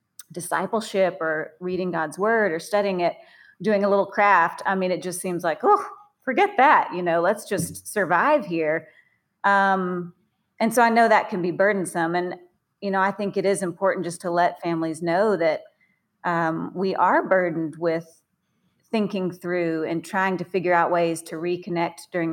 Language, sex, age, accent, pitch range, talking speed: English, female, 40-59, American, 170-195 Hz, 175 wpm